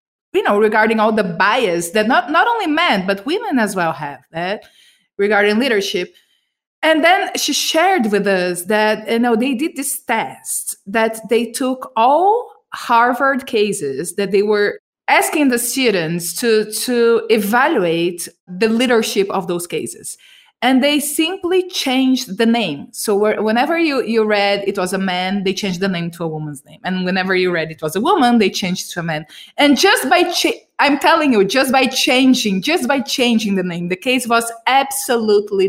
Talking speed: 180 wpm